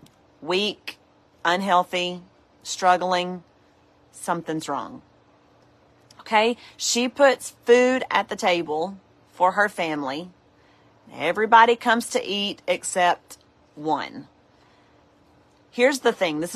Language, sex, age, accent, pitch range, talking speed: English, female, 40-59, American, 170-210 Hz, 90 wpm